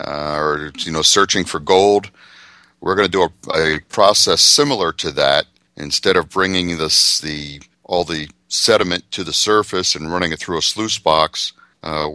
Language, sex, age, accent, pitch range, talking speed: English, male, 50-69, American, 80-95 Hz, 170 wpm